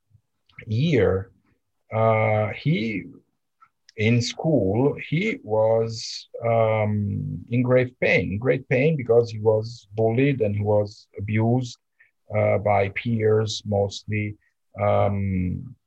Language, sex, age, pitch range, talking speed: English, male, 50-69, 100-125 Hz, 100 wpm